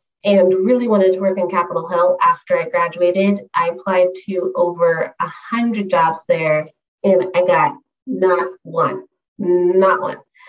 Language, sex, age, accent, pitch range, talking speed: English, female, 30-49, American, 180-220 Hz, 150 wpm